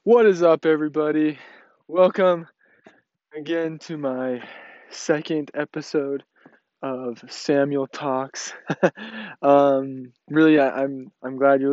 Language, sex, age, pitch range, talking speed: English, male, 20-39, 130-155 Hz, 100 wpm